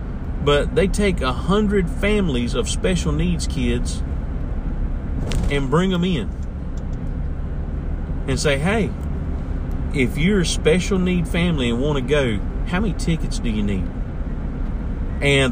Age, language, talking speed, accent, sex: 40-59, English, 130 wpm, American, male